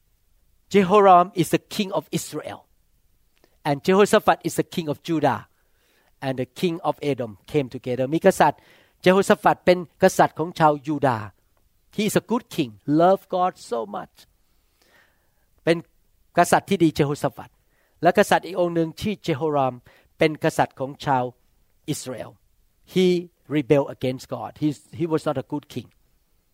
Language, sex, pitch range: Thai, male, 130-185 Hz